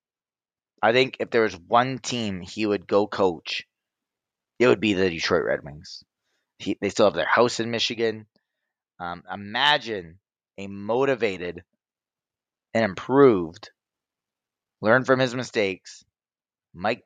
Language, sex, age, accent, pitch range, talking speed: English, male, 20-39, American, 100-130 Hz, 130 wpm